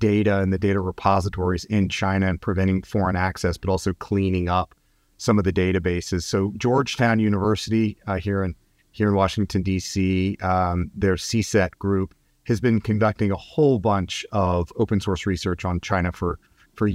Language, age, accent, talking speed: English, 40-59, American, 165 wpm